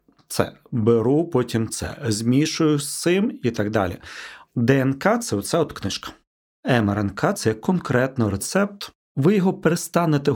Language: Ukrainian